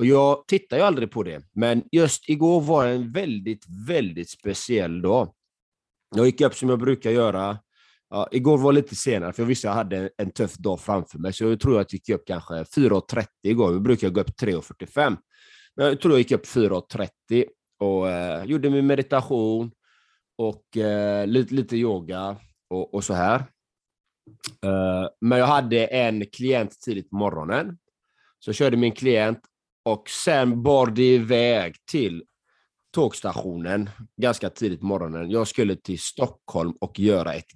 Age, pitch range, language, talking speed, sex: 30-49, 95-125 Hz, Swedish, 170 wpm, male